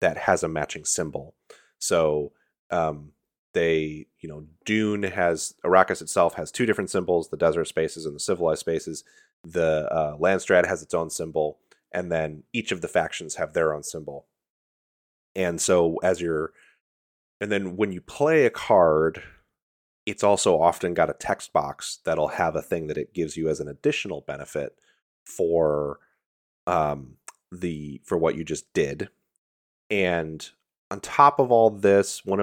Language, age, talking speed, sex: English, 30-49, 160 wpm, male